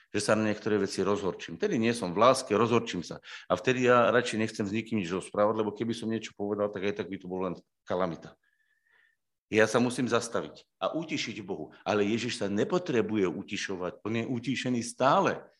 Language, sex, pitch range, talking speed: Slovak, male, 120-190 Hz, 195 wpm